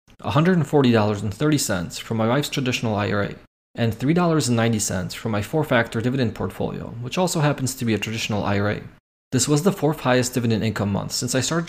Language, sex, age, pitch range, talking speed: English, male, 20-39, 105-145 Hz, 160 wpm